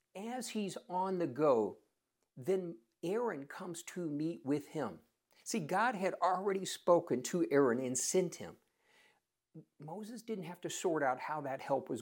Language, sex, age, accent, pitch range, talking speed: English, male, 50-69, American, 150-215 Hz, 160 wpm